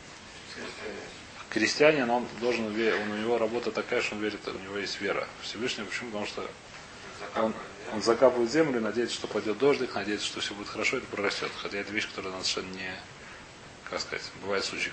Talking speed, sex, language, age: 185 wpm, male, Russian, 30-49